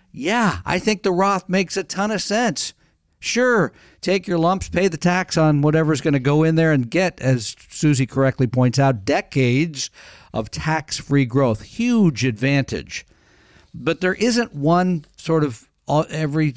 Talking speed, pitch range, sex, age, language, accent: 160 wpm, 130-160 Hz, male, 50-69, English, American